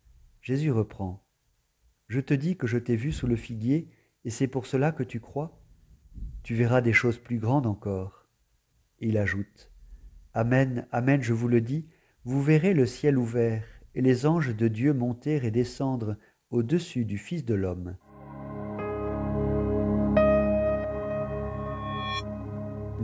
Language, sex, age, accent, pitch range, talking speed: French, male, 50-69, French, 105-135 Hz, 150 wpm